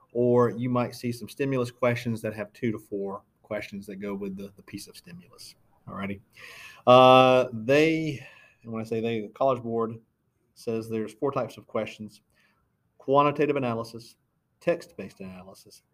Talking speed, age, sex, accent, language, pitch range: 160 wpm, 40-59, male, American, English, 110-125 Hz